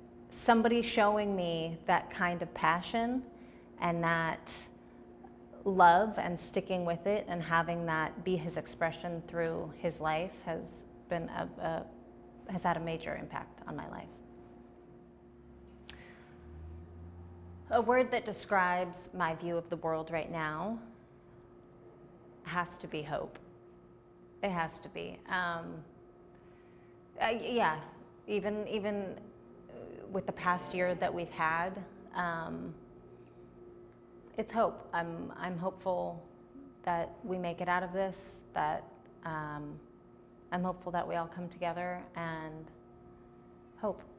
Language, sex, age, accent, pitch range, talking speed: English, female, 30-49, American, 120-180 Hz, 120 wpm